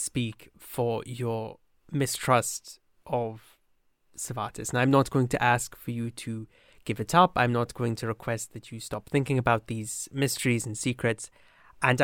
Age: 20-39